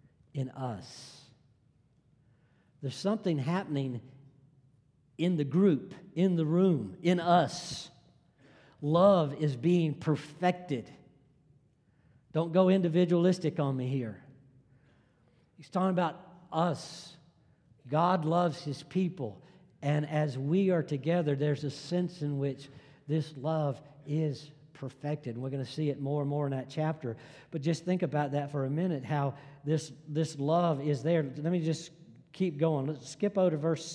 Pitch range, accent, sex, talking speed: 140-170 Hz, American, male, 140 wpm